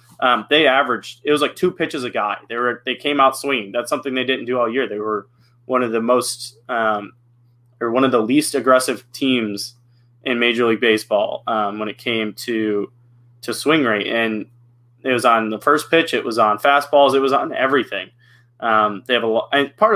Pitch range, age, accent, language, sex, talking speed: 110-130 Hz, 20-39, American, English, male, 215 wpm